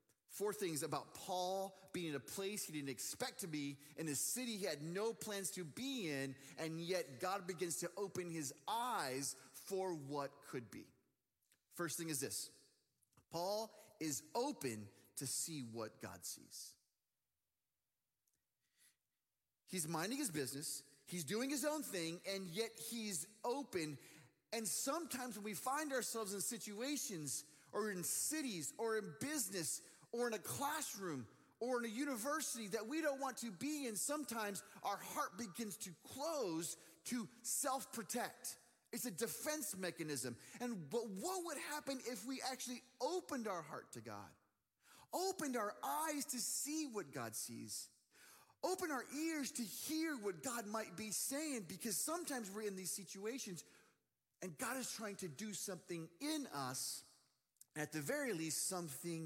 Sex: male